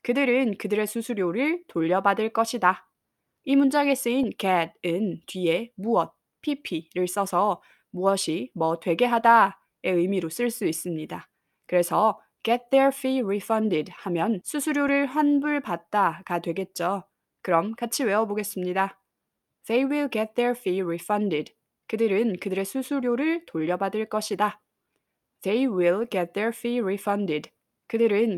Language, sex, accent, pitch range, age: Korean, female, native, 180-235 Hz, 20-39